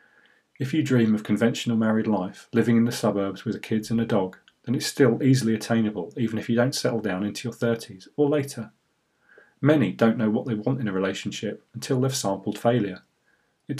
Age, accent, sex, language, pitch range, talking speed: 40-59, British, male, English, 105-125 Hz, 210 wpm